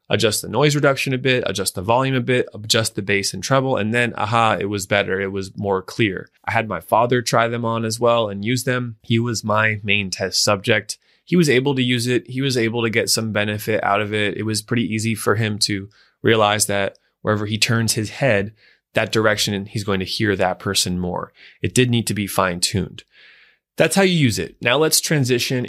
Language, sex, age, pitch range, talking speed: English, male, 20-39, 105-130 Hz, 225 wpm